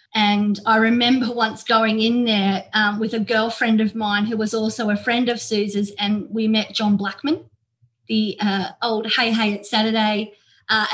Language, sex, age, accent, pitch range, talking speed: English, female, 30-49, Australian, 200-230 Hz, 180 wpm